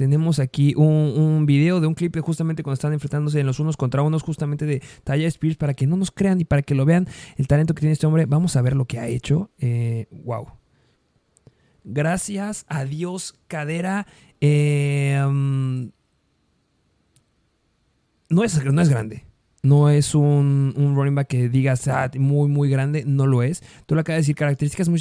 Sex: male